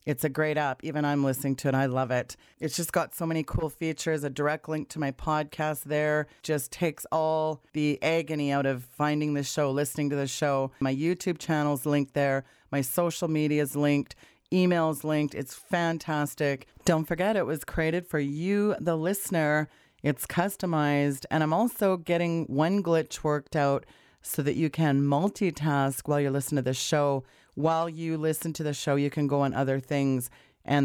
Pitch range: 140-165 Hz